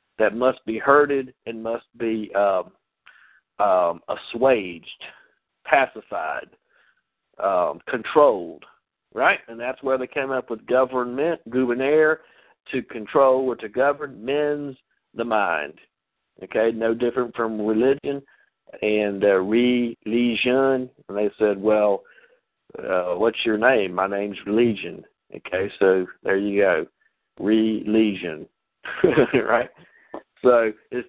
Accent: American